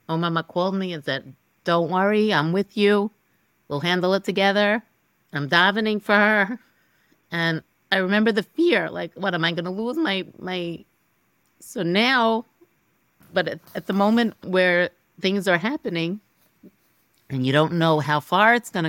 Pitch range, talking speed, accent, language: 160-195 Hz, 165 wpm, American, English